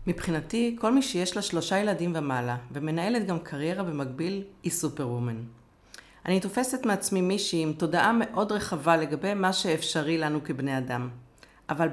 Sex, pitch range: female, 150-200 Hz